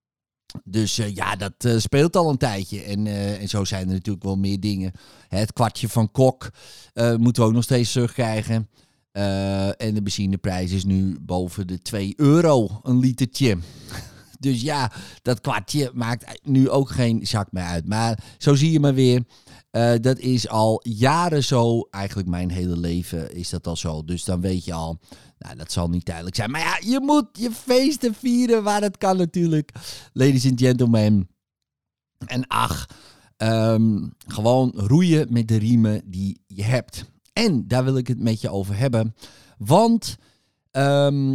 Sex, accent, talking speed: male, Dutch, 175 wpm